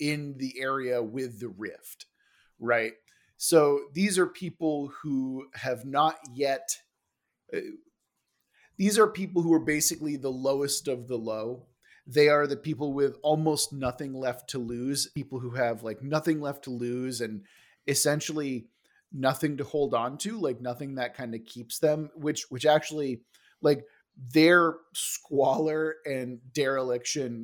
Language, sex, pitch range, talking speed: English, male, 125-155 Hz, 145 wpm